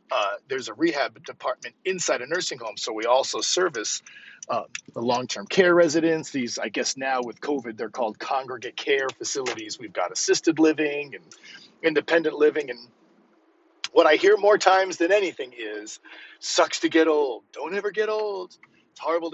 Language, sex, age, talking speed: English, male, 40-59, 170 wpm